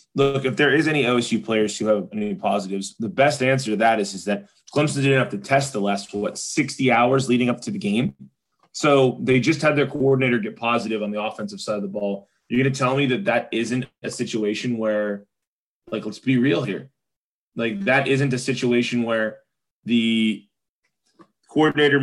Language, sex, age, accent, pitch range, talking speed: English, male, 20-39, American, 110-140 Hz, 200 wpm